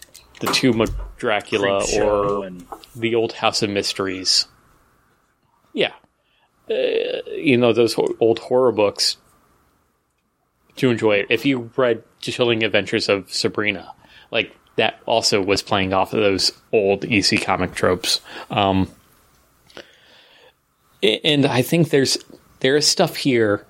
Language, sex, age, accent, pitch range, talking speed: English, male, 30-49, American, 105-125 Hz, 125 wpm